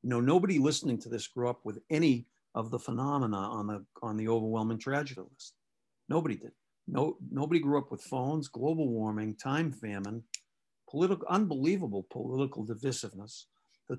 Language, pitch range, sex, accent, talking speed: English, 120-160 Hz, male, American, 165 wpm